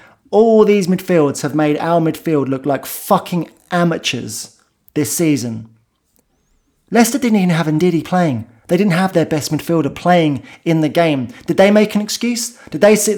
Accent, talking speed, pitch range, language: British, 170 wpm, 145-190 Hz, English